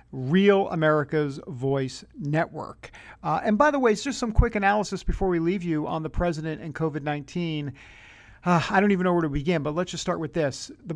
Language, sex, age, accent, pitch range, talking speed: English, male, 50-69, American, 155-200 Hz, 205 wpm